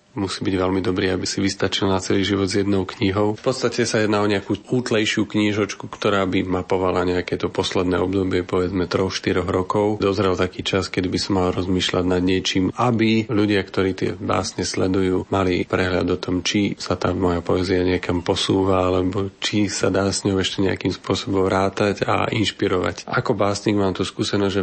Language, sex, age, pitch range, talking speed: Slovak, male, 40-59, 95-105 Hz, 190 wpm